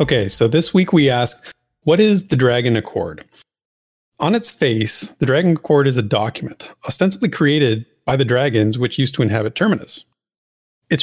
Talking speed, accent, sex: 170 wpm, American, male